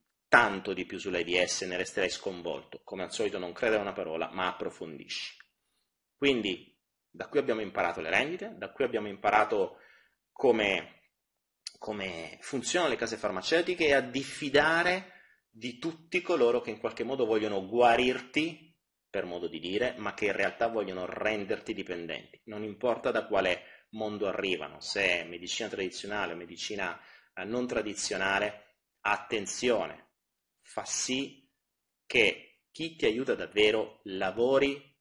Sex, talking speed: male, 135 wpm